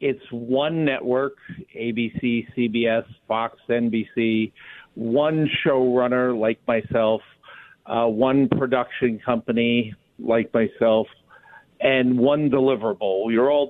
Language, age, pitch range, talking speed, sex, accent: English, 50-69, 115-135 Hz, 95 wpm, male, American